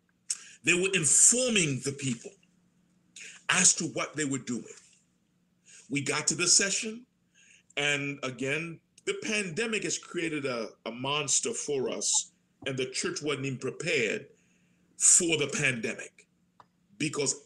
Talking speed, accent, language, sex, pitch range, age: 125 wpm, American, English, male, 145-215 Hz, 40-59